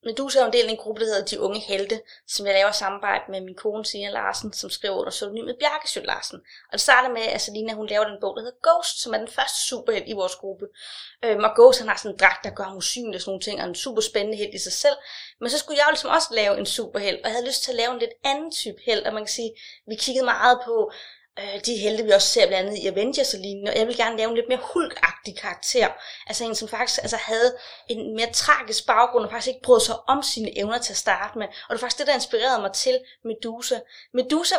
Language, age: Danish, 20-39